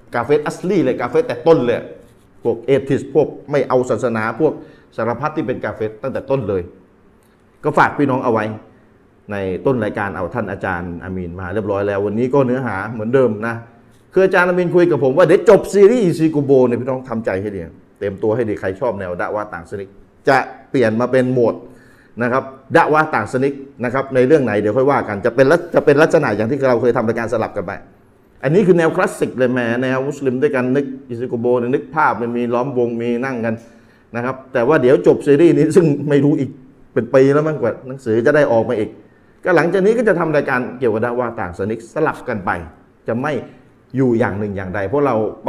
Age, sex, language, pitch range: 30-49, male, Thai, 110-140 Hz